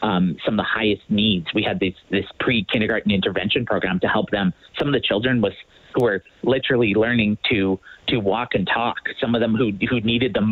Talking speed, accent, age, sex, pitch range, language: 210 wpm, American, 30-49, male, 100-120 Hz, English